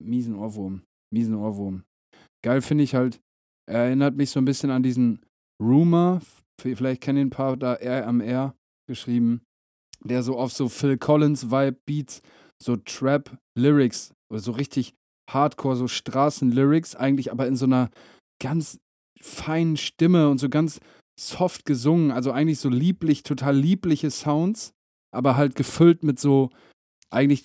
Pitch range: 125-145 Hz